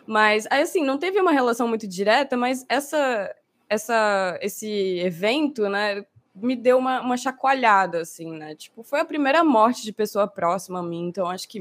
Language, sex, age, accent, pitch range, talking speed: Portuguese, female, 20-39, Brazilian, 190-250 Hz, 165 wpm